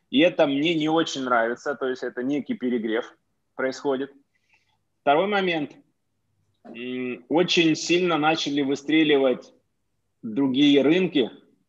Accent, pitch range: native, 120-145 Hz